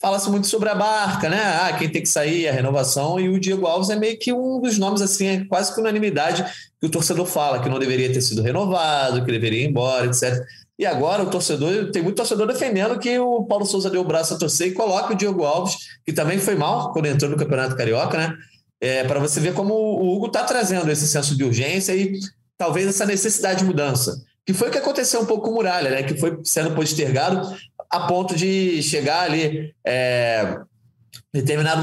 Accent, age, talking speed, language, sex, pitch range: Brazilian, 20-39, 220 wpm, Portuguese, male, 130-190 Hz